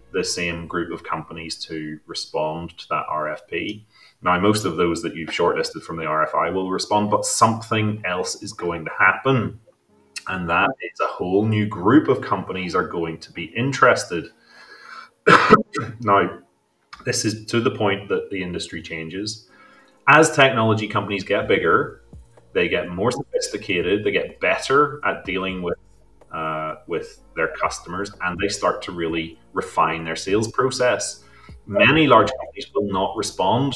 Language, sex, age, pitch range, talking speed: English, male, 30-49, 80-110 Hz, 155 wpm